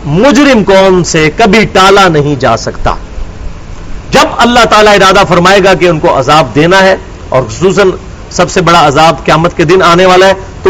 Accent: Indian